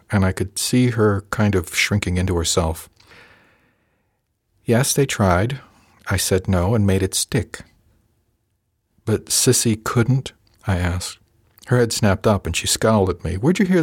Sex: male